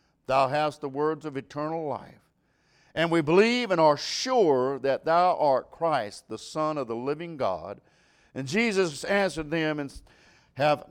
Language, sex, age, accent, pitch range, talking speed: English, male, 50-69, American, 120-200 Hz, 160 wpm